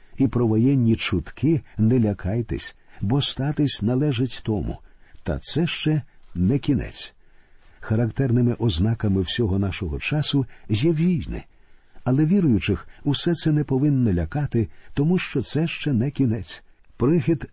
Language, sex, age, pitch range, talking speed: Ukrainian, male, 50-69, 105-140 Hz, 125 wpm